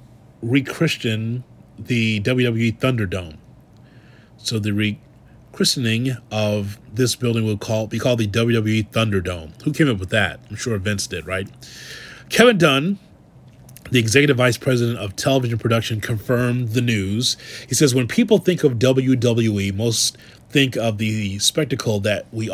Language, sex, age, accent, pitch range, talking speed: English, male, 30-49, American, 110-140 Hz, 140 wpm